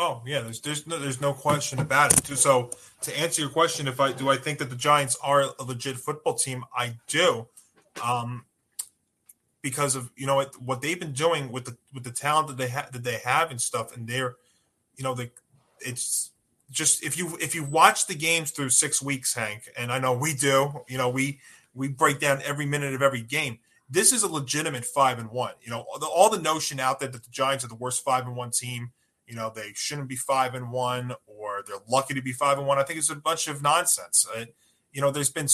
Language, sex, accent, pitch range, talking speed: English, male, American, 130-160 Hz, 235 wpm